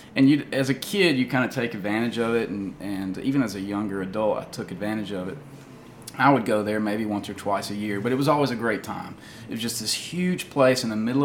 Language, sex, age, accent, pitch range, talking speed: English, male, 30-49, American, 105-130 Hz, 265 wpm